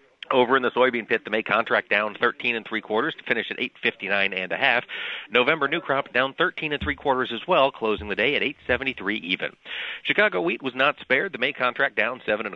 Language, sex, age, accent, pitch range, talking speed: English, male, 40-59, American, 115-145 Hz, 245 wpm